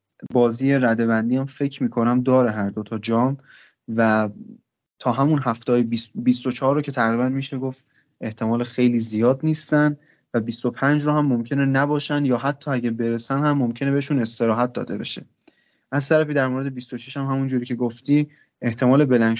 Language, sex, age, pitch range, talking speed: Persian, male, 20-39, 115-140 Hz, 165 wpm